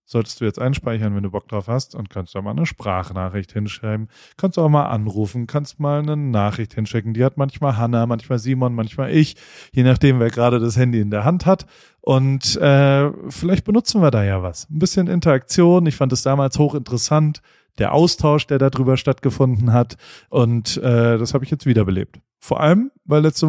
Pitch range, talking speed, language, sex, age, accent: 115-150 Hz, 195 wpm, German, male, 30-49, German